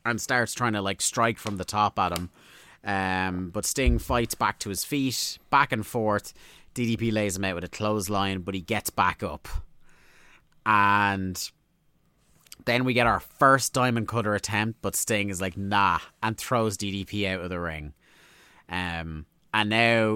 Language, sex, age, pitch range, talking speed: English, male, 30-49, 90-110 Hz, 175 wpm